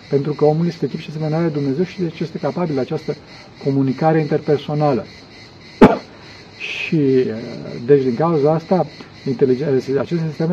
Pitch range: 135-160 Hz